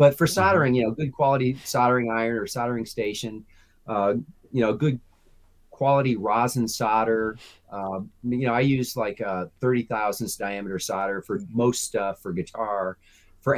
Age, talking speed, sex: 30-49, 155 wpm, male